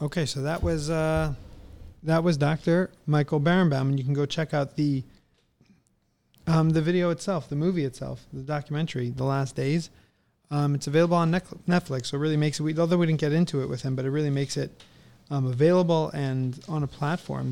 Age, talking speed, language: 30-49, 200 wpm, English